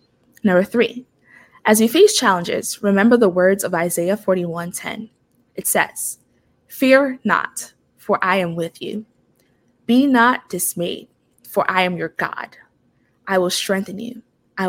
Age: 20-39